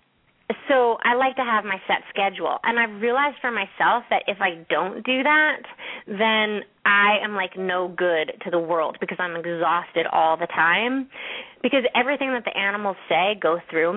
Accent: American